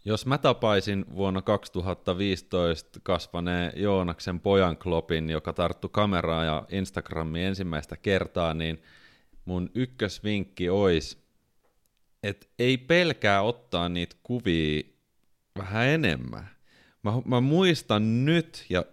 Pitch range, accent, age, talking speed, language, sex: 90-115 Hz, native, 30-49, 105 wpm, Finnish, male